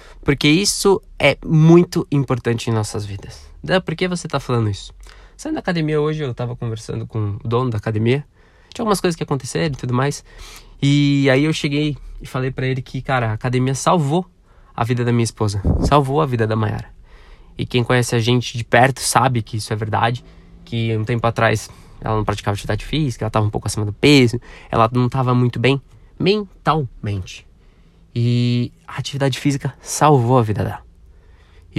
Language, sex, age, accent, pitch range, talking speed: Portuguese, male, 20-39, Brazilian, 110-140 Hz, 190 wpm